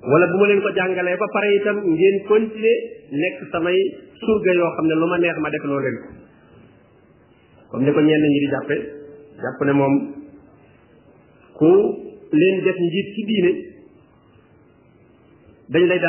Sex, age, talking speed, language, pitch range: male, 40-59, 120 wpm, French, 155-200 Hz